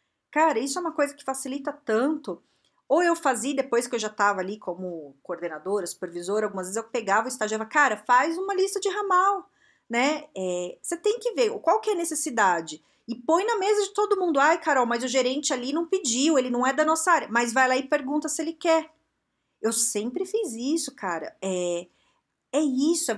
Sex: female